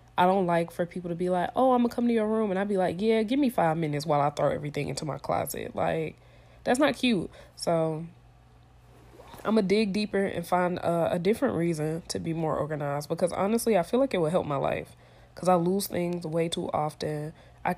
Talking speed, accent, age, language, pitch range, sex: 235 wpm, American, 20-39, English, 155-195 Hz, female